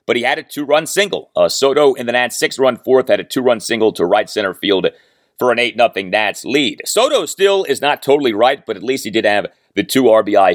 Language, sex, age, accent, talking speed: English, male, 30-49, American, 235 wpm